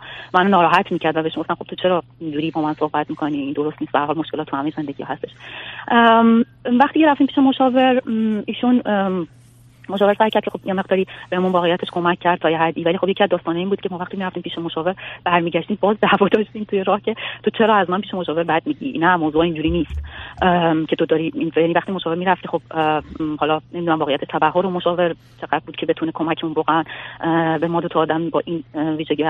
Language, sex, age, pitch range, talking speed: Persian, female, 30-49, 160-200 Hz, 210 wpm